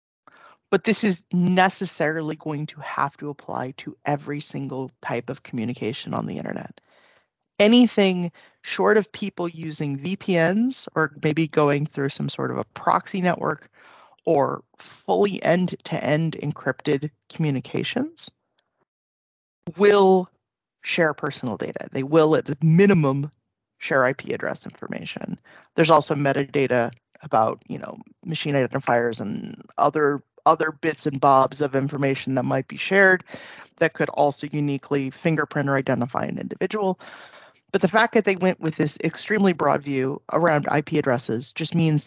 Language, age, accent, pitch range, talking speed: Finnish, 30-49, American, 140-185 Hz, 140 wpm